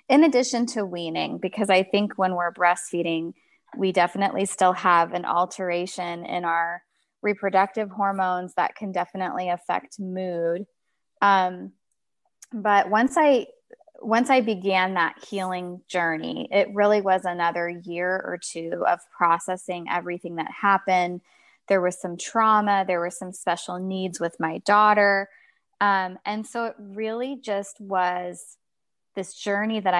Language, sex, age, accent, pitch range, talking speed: English, female, 20-39, American, 180-210 Hz, 140 wpm